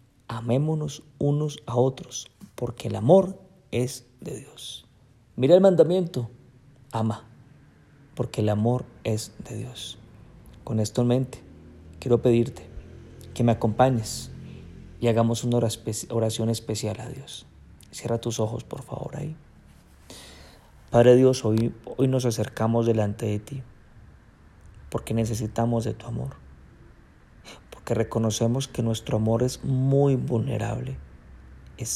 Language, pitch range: Spanish, 110-125 Hz